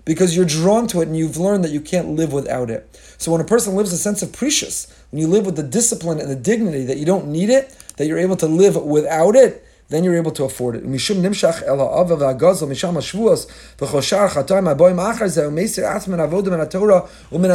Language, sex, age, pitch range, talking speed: English, male, 30-49, 155-205 Hz, 170 wpm